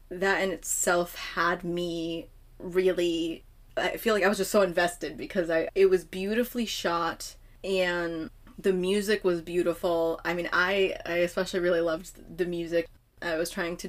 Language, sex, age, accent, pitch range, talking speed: English, female, 20-39, American, 170-185 Hz, 165 wpm